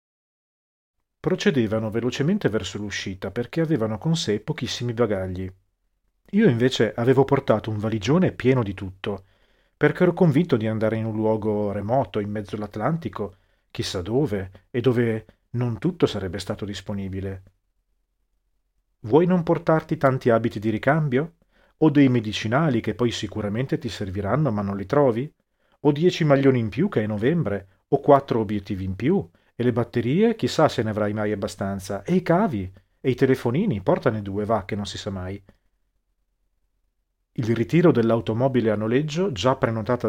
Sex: male